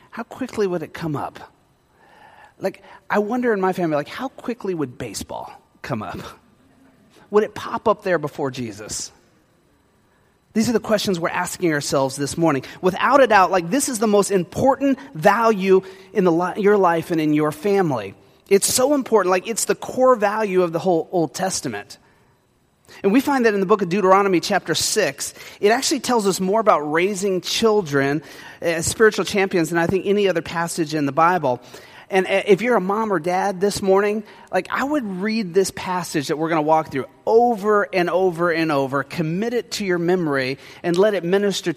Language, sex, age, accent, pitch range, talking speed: English, male, 30-49, American, 165-210 Hz, 190 wpm